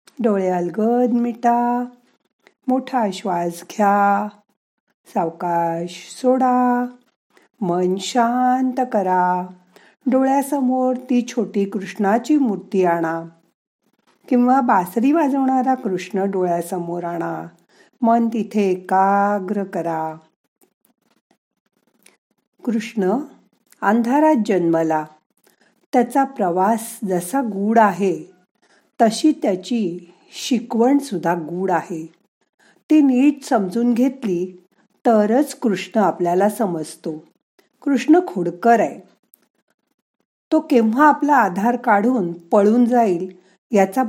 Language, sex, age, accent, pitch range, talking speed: Marathi, female, 50-69, native, 185-250 Hz, 80 wpm